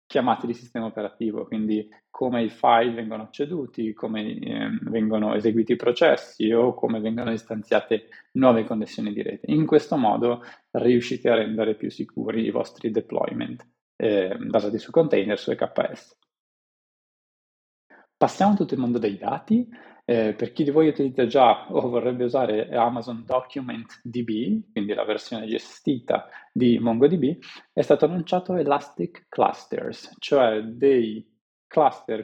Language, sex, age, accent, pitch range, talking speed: Italian, male, 20-39, native, 110-130 Hz, 140 wpm